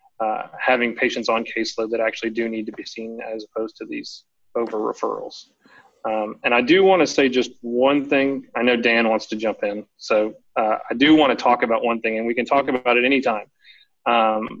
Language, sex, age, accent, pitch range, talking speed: English, male, 30-49, American, 115-135 Hz, 220 wpm